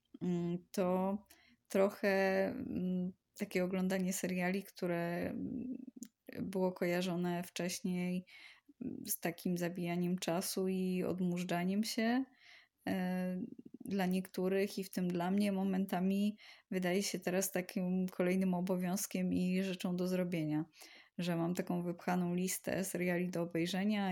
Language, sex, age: Polish, female, 20-39